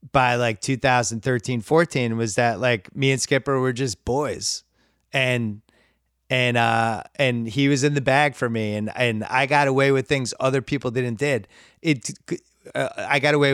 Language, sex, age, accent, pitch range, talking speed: English, male, 30-49, American, 125-165 Hz, 175 wpm